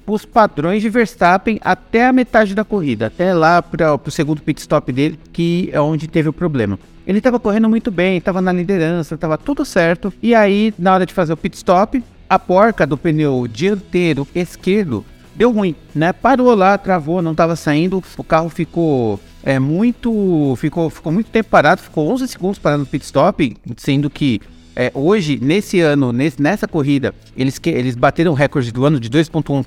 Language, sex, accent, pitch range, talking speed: Portuguese, male, Brazilian, 150-195 Hz, 185 wpm